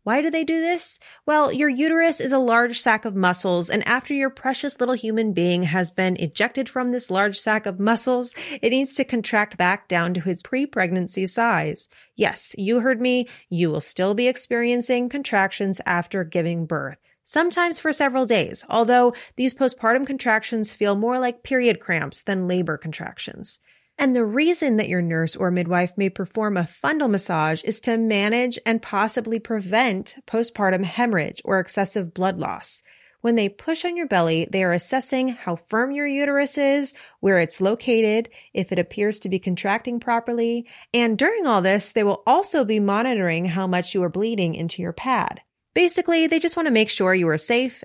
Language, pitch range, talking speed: English, 185-255 Hz, 180 wpm